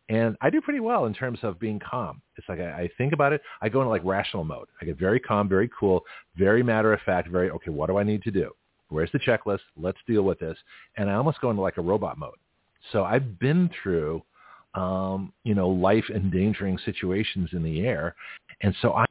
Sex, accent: male, American